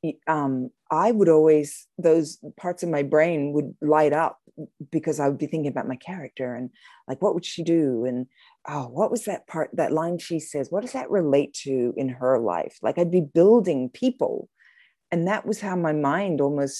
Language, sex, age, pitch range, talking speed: English, female, 40-59, 140-195 Hz, 200 wpm